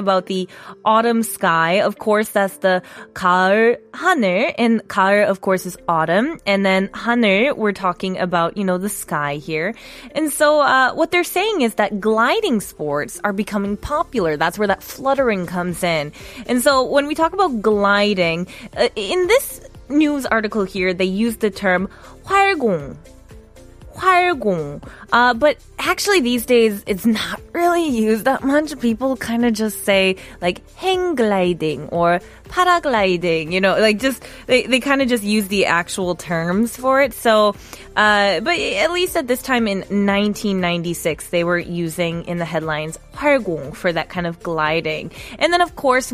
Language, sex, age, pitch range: Korean, female, 20-39, 185-255 Hz